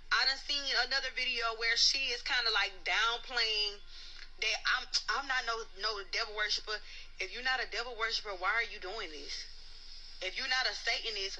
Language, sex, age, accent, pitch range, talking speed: English, female, 20-39, American, 220-275 Hz, 190 wpm